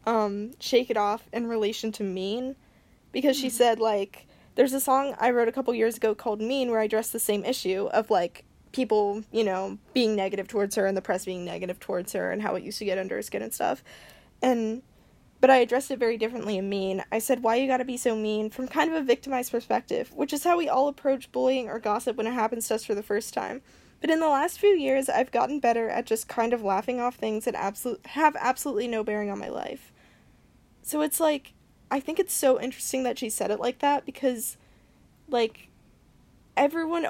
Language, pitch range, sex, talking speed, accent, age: English, 215-270 Hz, female, 225 wpm, American, 10-29